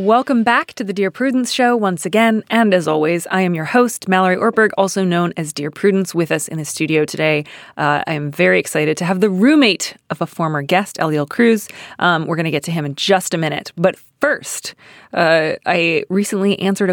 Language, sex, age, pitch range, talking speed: English, female, 30-49, 155-215 Hz, 215 wpm